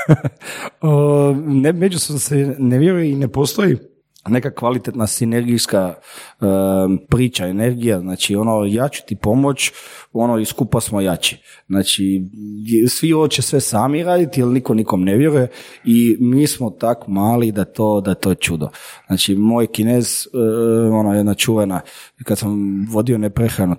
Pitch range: 100-140 Hz